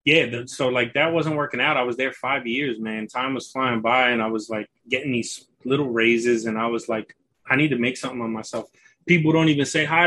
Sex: male